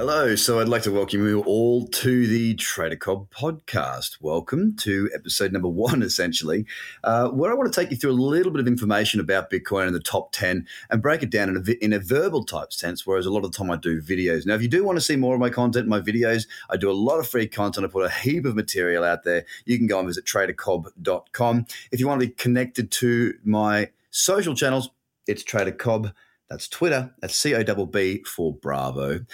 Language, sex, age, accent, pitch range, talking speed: English, male, 30-49, Australian, 95-125 Hz, 230 wpm